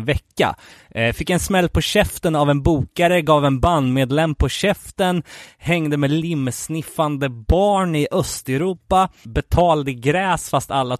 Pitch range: 130-160 Hz